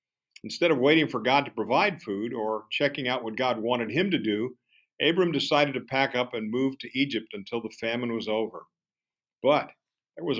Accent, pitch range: American, 115-145 Hz